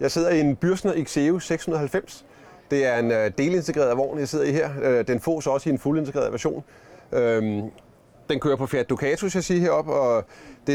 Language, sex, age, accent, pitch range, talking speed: Danish, male, 30-49, native, 120-160 Hz, 170 wpm